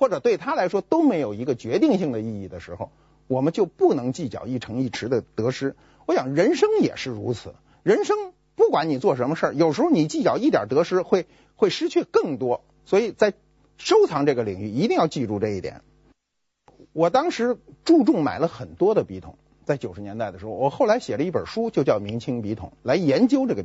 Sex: male